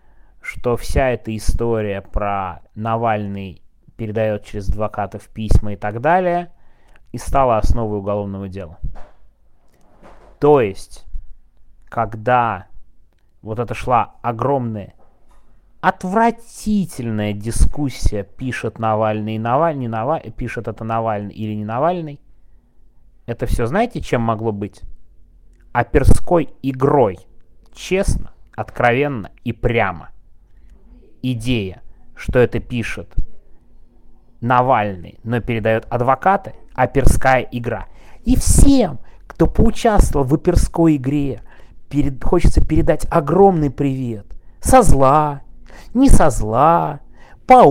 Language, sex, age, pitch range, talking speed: Russian, male, 30-49, 100-145 Hz, 95 wpm